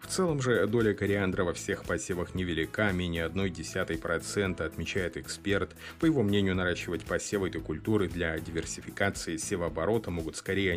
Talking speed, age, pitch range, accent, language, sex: 140 wpm, 30-49, 90-110 Hz, native, Russian, male